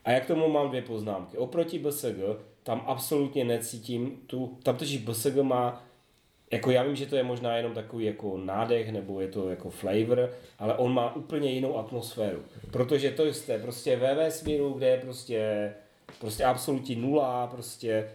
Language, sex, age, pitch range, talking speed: Czech, male, 30-49, 115-140 Hz, 160 wpm